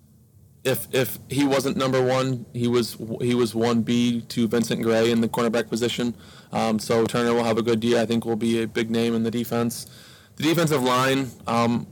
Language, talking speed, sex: English, 210 wpm, male